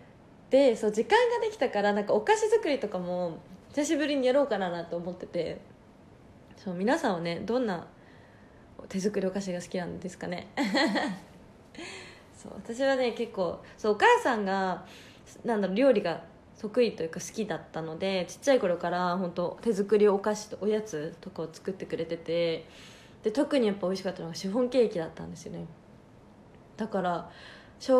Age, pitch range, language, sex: 20-39, 175-225 Hz, Japanese, female